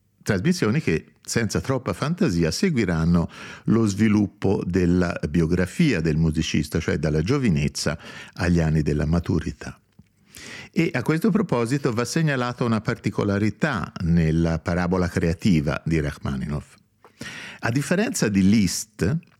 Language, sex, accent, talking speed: Italian, male, native, 110 wpm